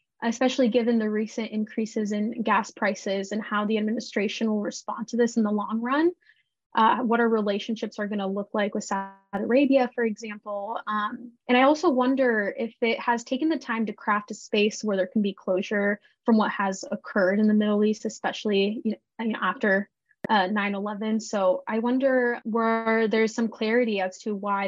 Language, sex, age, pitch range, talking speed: English, female, 10-29, 200-235 Hz, 180 wpm